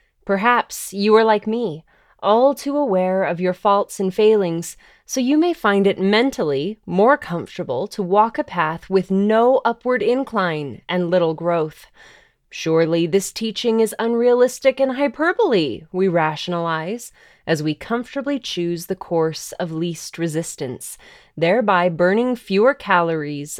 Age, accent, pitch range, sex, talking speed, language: 20-39, American, 170-225 Hz, female, 135 wpm, English